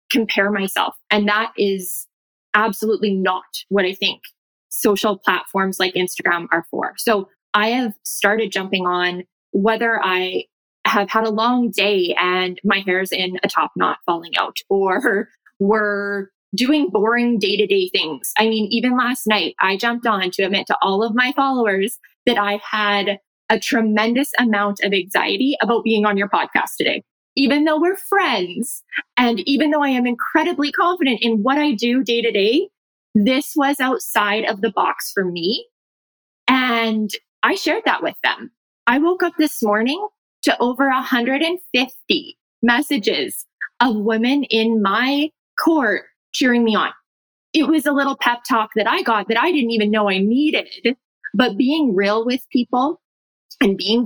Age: 20-39